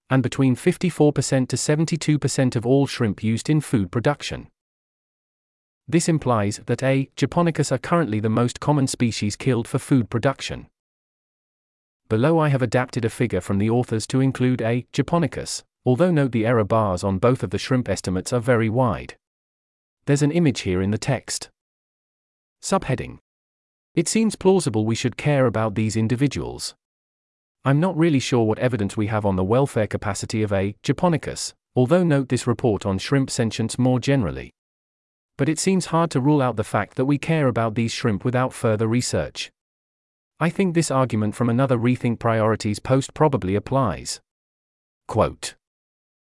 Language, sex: English, male